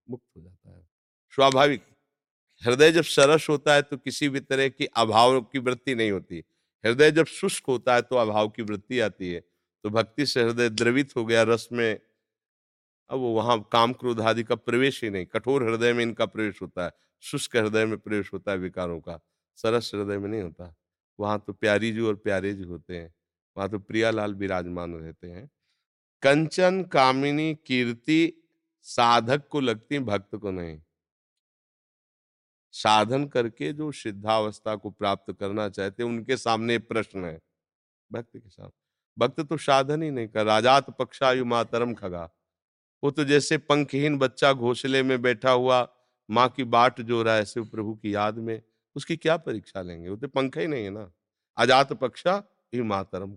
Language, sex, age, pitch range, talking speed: Hindi, male, 50-69, 100-130 Hz, 160 wpm